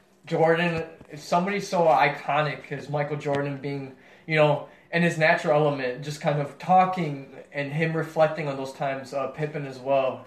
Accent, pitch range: American, 130-155 Hz